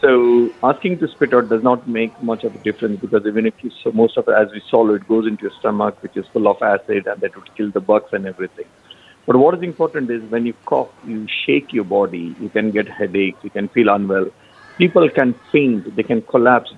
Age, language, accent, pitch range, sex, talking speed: 50-69, English, Indian, 110-145 Hz, male, 240 wpm